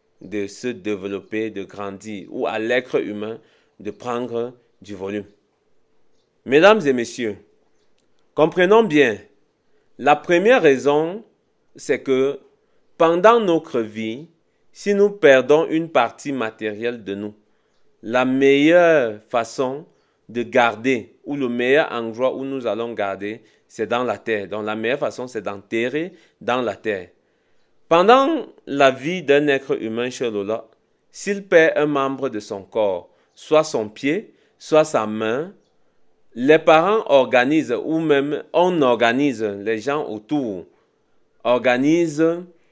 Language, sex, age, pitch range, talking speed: French, male, 40-59, 115-155 Hz, 130 wpm